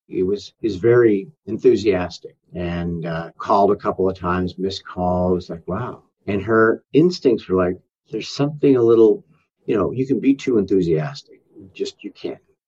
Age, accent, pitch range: 50-69, American, 90-130 Hz